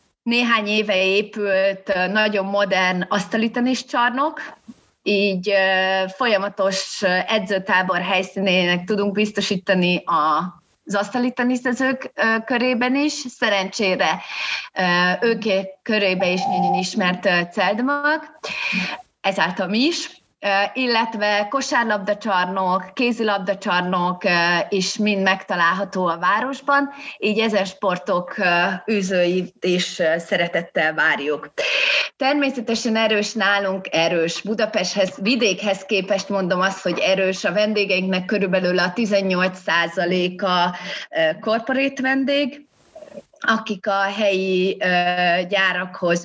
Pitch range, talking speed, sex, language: 185-230 Hz, 85 wpm, female, Hungarian